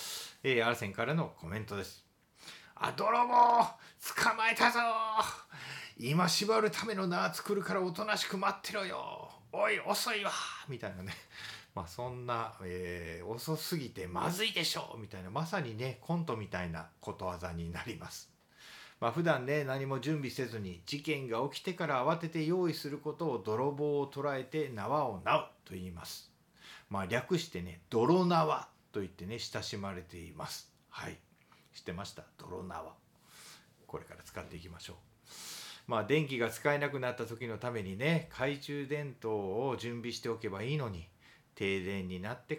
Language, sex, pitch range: Japanese, male, 105-155 Hz